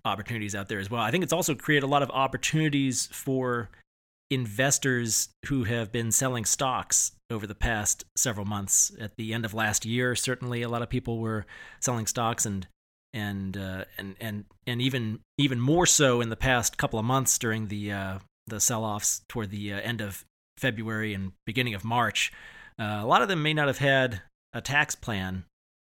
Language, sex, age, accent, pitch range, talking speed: English, male, 30-49, American, 105-125 Hz, 195 wpm